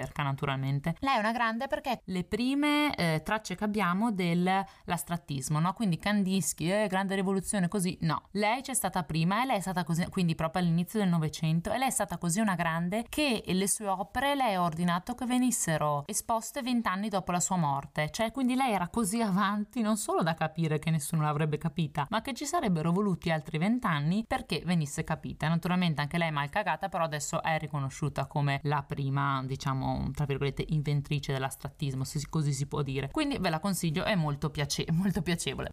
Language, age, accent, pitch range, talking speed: Italian, 20-39, native, 155-205 Hz, 190 wpm